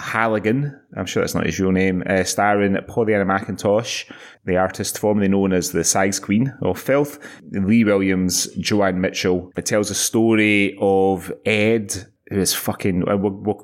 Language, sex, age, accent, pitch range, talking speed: English, male, 20-39, British, 90-105 Hz, 165 wpm